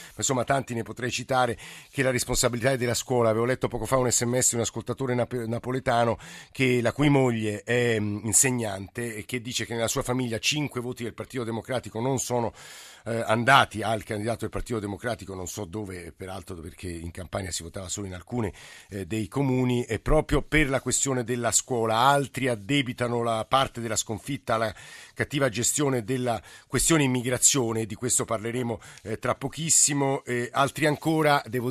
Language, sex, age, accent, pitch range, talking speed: Italian, male, 50-69, native, 110-130 Hz, 175 wpm